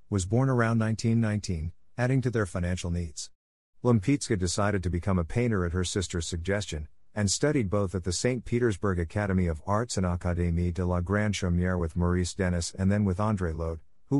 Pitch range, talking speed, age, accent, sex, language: 90-115 Hz, 185 wpm, 50-69, American, male, English